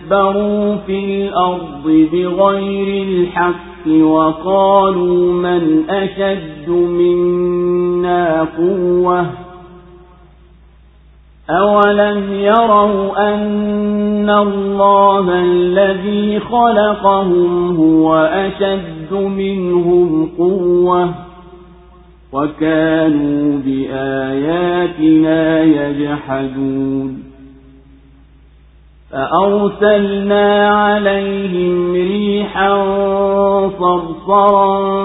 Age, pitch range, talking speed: 40-59, 160-195 Hz, 45 wpm